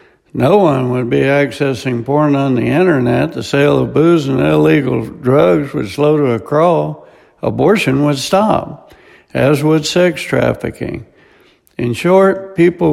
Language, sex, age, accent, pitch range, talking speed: English, male, 60-79, American, 145-195 Hz, 145 wpm